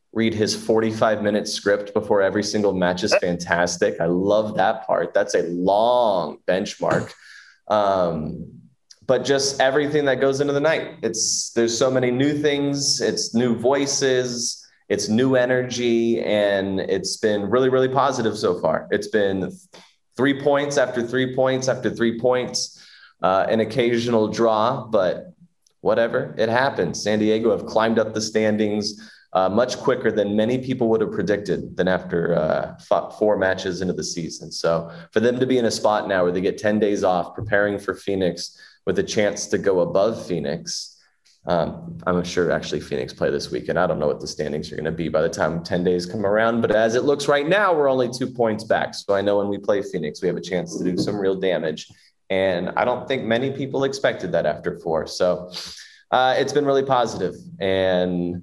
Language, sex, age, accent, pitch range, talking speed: English, male, 20-39, American, 100-130 Hz, 190 wpm